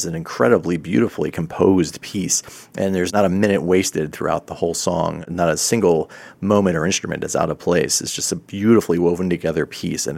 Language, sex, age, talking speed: English, male, 30-49, 195 wpm